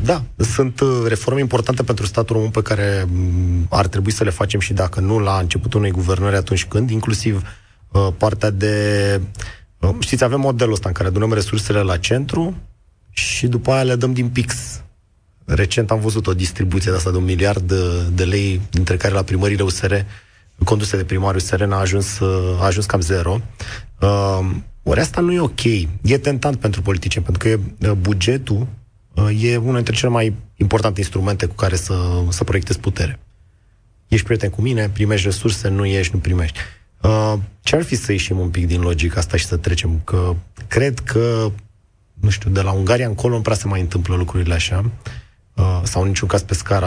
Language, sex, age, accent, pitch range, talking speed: Romanian, male, 30-49, native, 95-110 Hz, 185 wpm